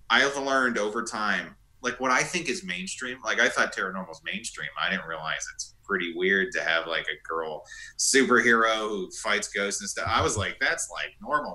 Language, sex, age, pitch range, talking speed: English, male, 30-49, 105-135 Hz, 210 wpm